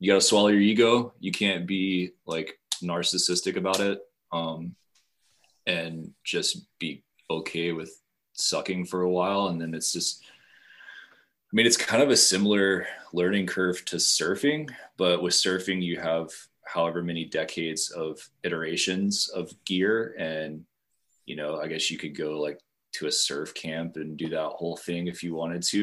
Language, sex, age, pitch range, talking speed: English, male, 20-39, 80-95 Hz, 165 wpm